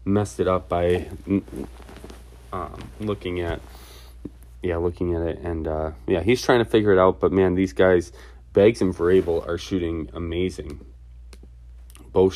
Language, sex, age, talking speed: English, male, 20-39, 150 wpm